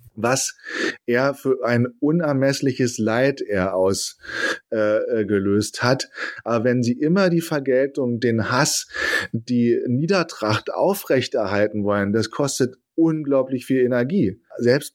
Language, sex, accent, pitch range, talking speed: German, male, German, 115-135 Hz, 110 wpm